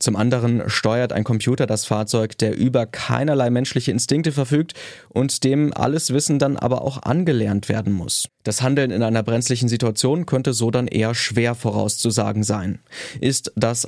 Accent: German